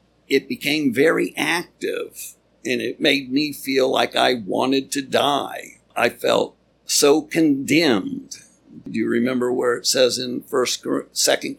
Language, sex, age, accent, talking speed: English, male, 60-79, American, 140 wpm